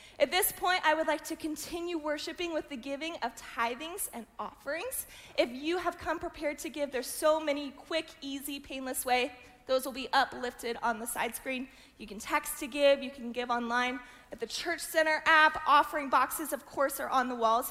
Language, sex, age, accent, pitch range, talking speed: English, female, 20-39, American, 240-305 Hz, 205 wpm